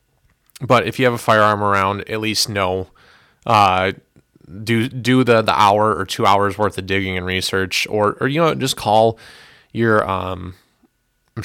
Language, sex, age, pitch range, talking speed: English, male, 20-39, 95-110 Hz, 175 wpm